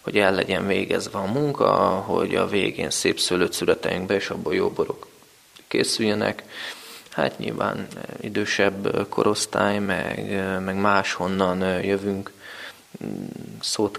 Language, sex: Hungarian, male